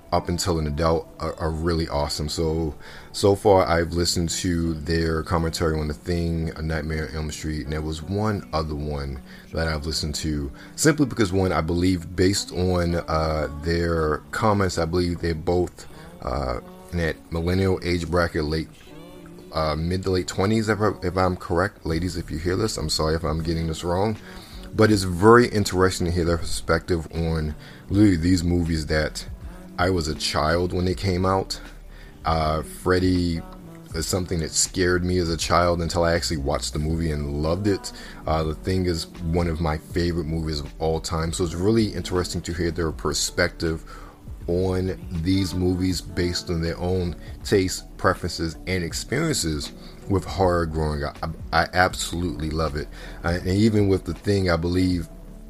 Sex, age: male, 30-49